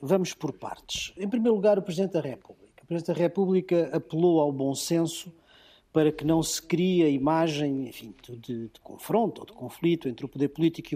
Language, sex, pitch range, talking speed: Portuguese, male, 135-175 Hz, 205 wpm